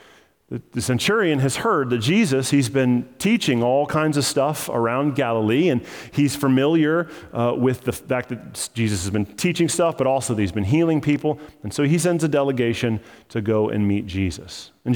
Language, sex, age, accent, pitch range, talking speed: English, male, 40-59, American, 125-170 Hz, 190 wpm